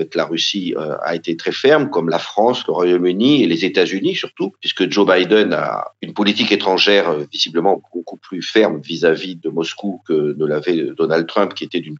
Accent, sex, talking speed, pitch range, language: French, male, 185 wpm, 90-120 Hz, French